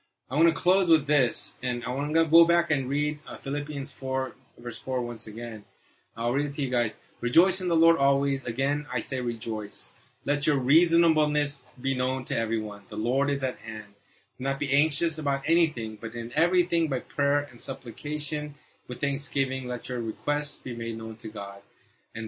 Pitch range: 120-150 Hz